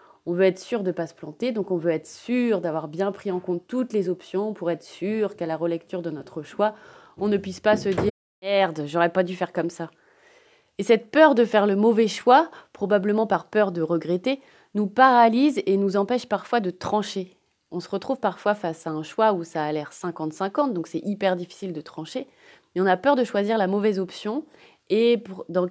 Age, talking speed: 30-49, 225 wpm